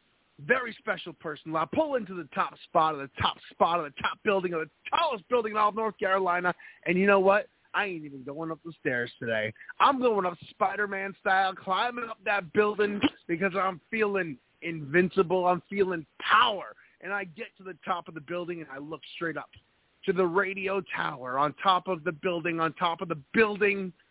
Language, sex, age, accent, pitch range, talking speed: English, male, 30-49, American, 145-190 Hz, 205 wpm